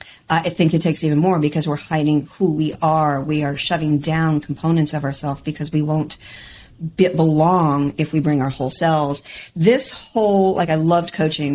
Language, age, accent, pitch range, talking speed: English, 40-59, American, 145-175 Hz, 185 wpm